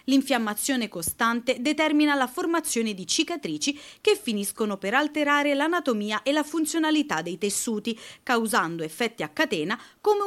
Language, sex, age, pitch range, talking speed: Italian, female, 30-49, 200-290 Hz, 130 wpm